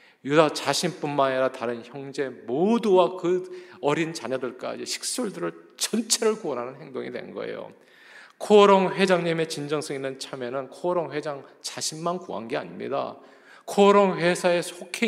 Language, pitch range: Korean, 130-190 Hz